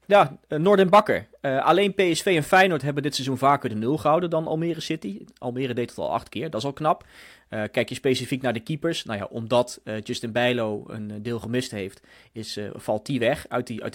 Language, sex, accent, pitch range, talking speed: Dutch, male, Dutch, 110-140 Hz, 230 wpm